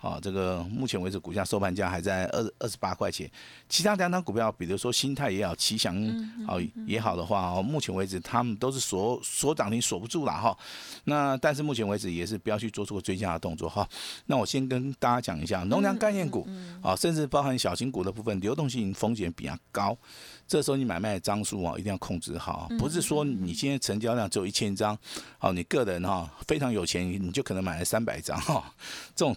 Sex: male